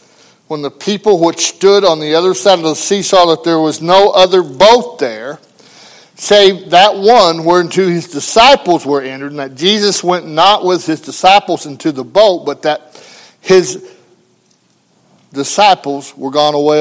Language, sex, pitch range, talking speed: English, male, 170-215 Hz, 165 wpm